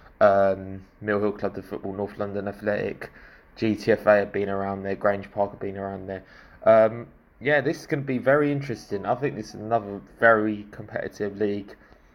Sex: male